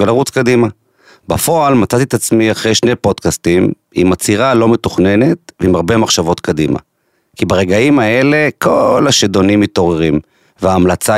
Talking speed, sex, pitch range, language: 130 wpm, male, 95-125 Hz, Hebrew